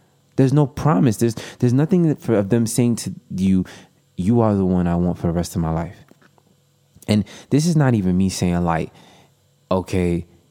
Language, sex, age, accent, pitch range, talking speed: English, male, 20-39, American, 85-110 Hz, 185 wpm